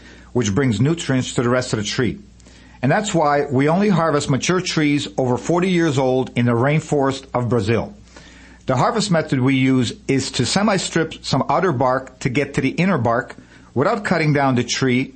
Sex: male